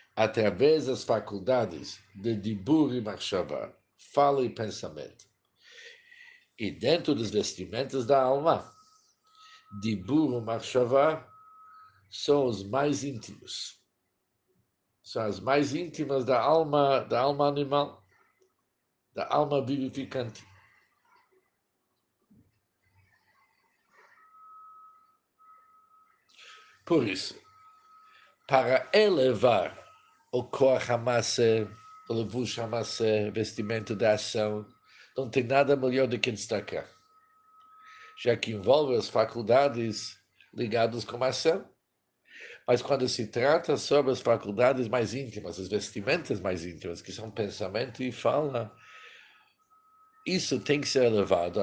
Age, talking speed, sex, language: 60-79, 100 wpm, male, Portuguese